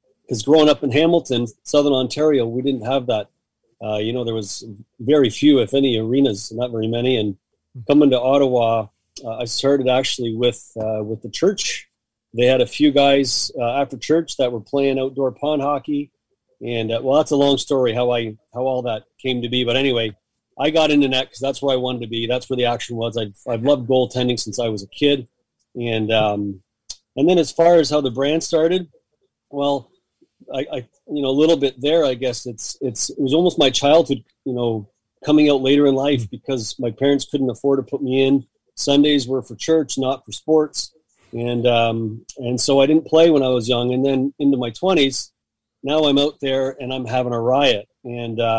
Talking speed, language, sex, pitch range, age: 210 wpm, English, male, 120-145 Hz, 40-59